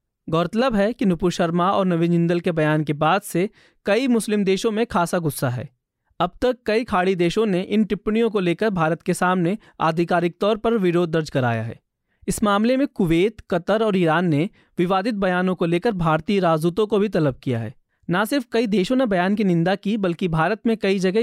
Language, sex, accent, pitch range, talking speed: Hindi, male, native, 165-210 Hz, 205 wpm